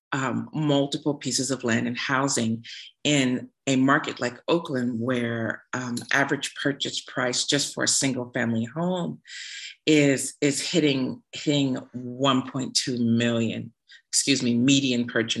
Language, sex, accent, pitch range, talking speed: English, female, American, 125-155 Hz, 125 wpm